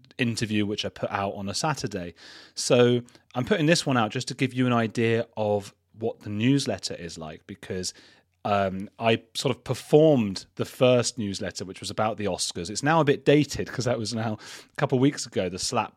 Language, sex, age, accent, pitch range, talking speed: English, male, 30-49, British, 100-130 Hz, 210 wpm